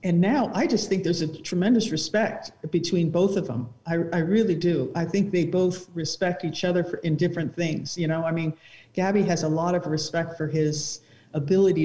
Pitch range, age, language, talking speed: 155-180 Hz, 50-69, English, 210 wpm